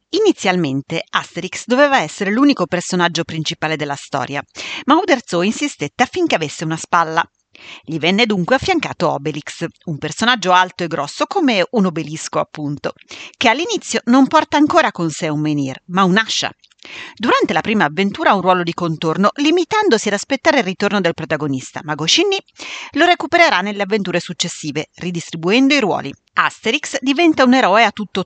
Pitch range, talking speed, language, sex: 165-260 Hz, 155 wpm, Italian, female